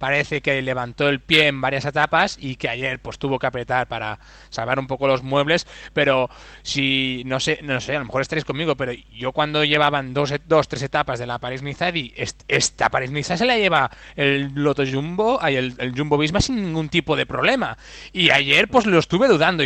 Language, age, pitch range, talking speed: Spanish, 20-39, 135-180 Hz, 210 wpm